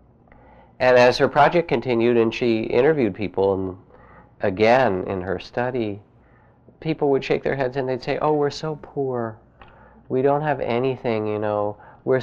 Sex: male